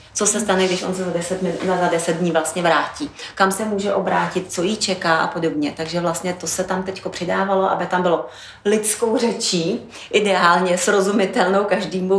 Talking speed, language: 185 wpm, Czech